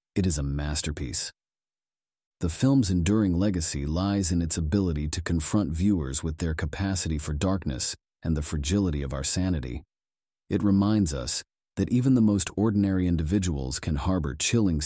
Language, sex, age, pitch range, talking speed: English, male, 40-59, 75-100 Hz, 155 wpm